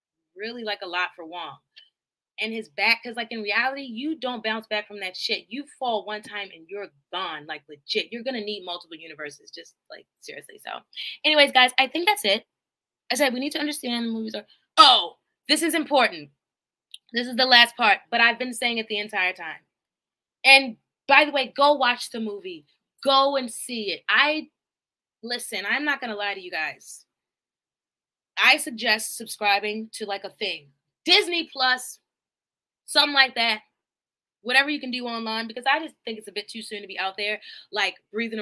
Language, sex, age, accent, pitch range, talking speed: English, female, 20-39, American, 210-275 Hz, 190 wpm